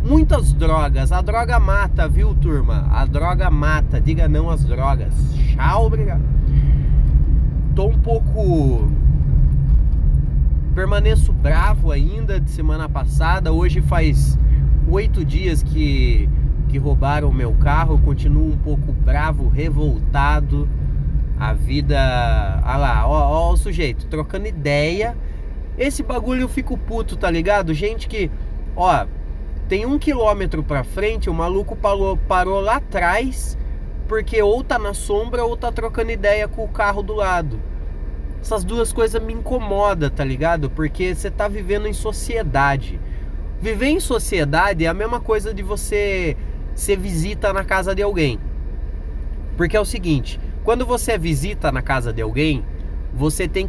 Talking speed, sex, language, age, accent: 140 wpm, male, Portuguese, 20-39, Brazilian